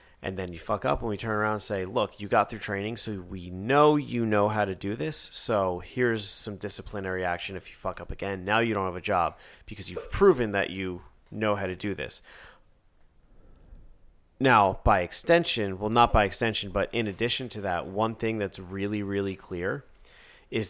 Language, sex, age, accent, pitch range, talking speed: English, male, 30-49, American, 90-110 Hz, 205 wpm